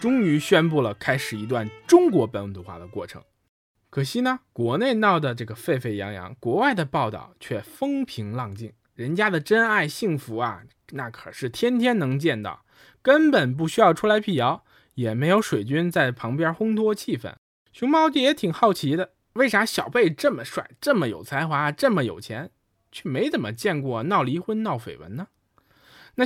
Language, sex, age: Chinese, male, 20-39